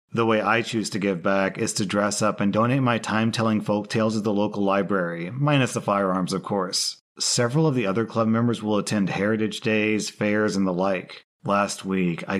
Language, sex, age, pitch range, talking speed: English, male, 40-59, 100-120 Hz, 215 wpm